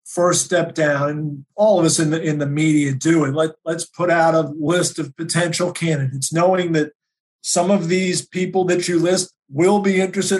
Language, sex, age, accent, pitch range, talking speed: English, male, 50-69, American, 150-180 Hz, 200 wpm